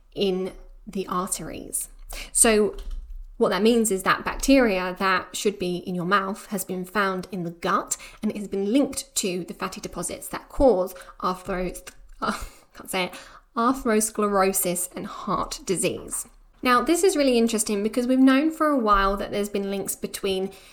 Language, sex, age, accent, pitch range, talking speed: English, female, 10-29, British, 185-220 Hz, 155 wpm